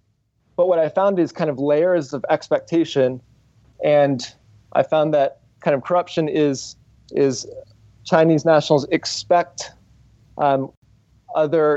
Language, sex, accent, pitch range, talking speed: English, male, American, 135-160 Hz, 120 wpm